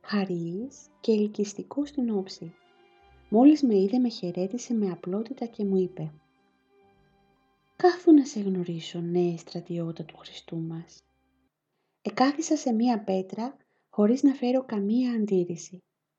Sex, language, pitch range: female, Greek, 175-240 Hz